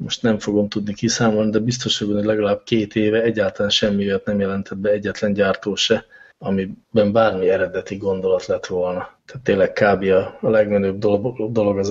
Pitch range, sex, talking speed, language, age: 95-110 Hz, male, 170 wpm, English, 20-39